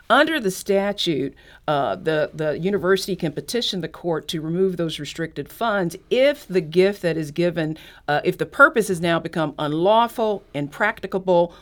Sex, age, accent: female, 40-59, American